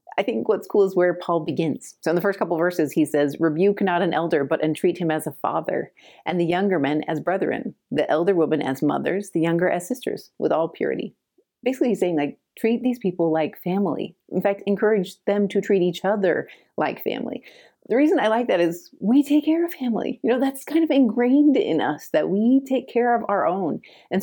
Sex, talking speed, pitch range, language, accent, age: female, 225 wpm, 155-215 Hz, English, American, 30-49